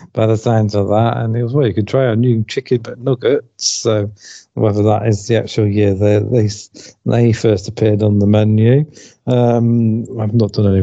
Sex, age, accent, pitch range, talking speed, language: male, 50-69, British, 105-120 Hz, 210 wpm, English